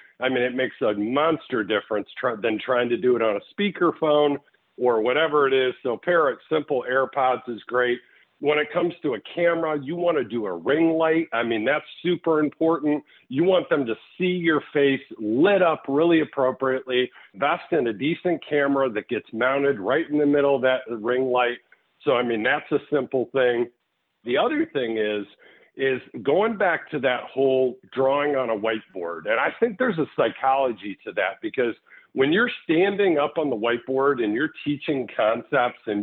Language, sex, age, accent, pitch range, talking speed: English, male, 50-69, American, 125-170 Hz, 185 wpm